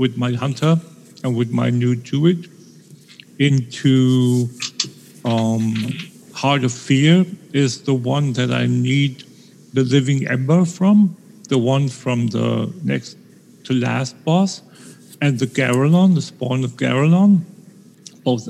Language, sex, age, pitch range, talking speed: English, male, 50-69, 125-160 Hz, 125 wpm